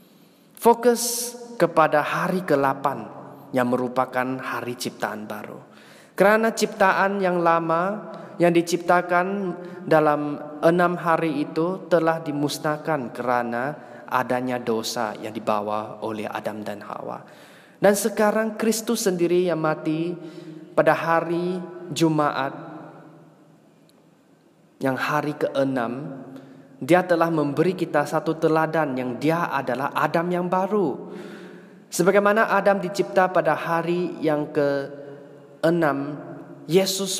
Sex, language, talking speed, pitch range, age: male, Malay, 100 wpm, 135-180 Hz, 20-39